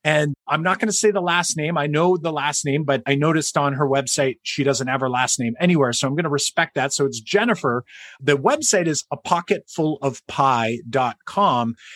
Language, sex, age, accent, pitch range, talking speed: English, male, 30-49, American, 135-180 Hz, 205 wpm